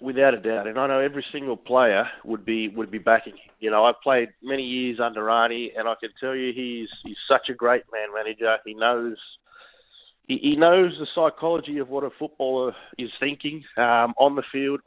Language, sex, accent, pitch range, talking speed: English, male, Australian, 115-135 Hz, 210 wpm